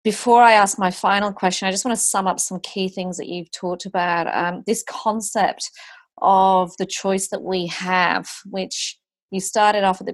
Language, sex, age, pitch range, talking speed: English, female, 30-49, 170-195 Hz, 200 wpm